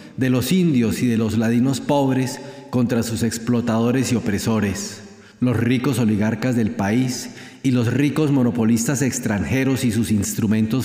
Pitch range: 110-130 Hz